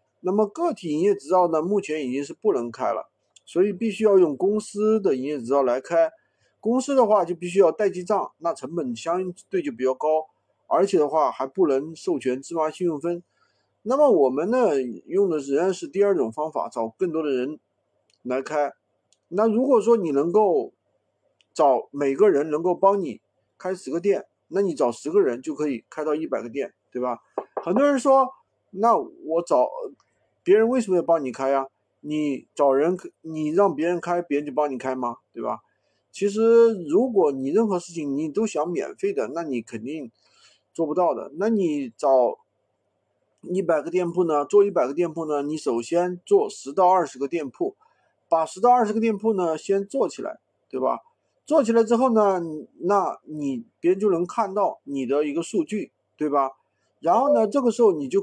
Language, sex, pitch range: Chinese, male, 150-230 Hz